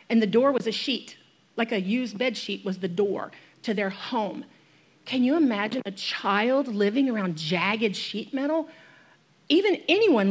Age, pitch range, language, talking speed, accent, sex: 40-59, 195-255 Hz, English, 170 wpm, American, female